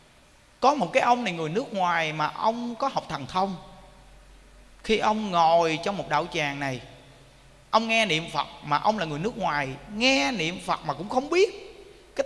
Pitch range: 155-245 Hz